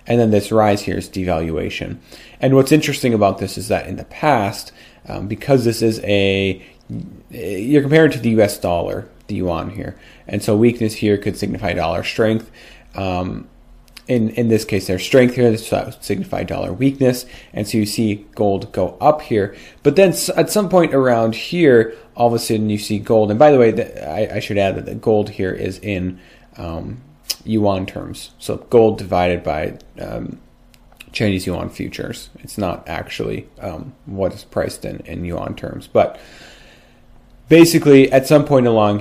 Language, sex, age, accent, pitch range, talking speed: English, male, 30-49, American, 95-125 Hz, 180 wpm